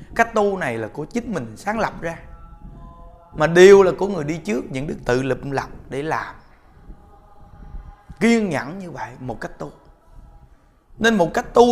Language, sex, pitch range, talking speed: Vietnamese, male, 125-205 Hz, 180 wpm